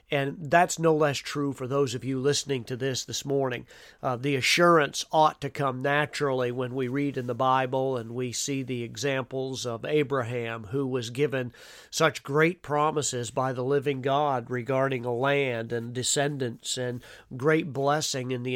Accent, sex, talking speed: American, male, 175 wpm